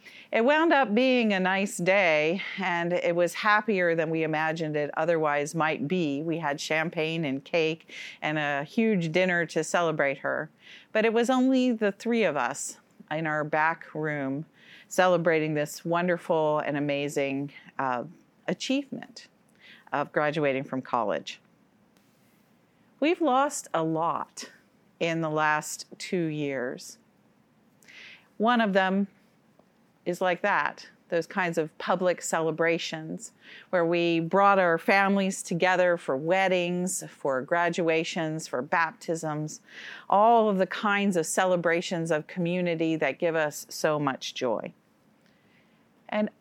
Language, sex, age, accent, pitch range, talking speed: English, female, 40-59, American, 160-200 Hz, 130 wpm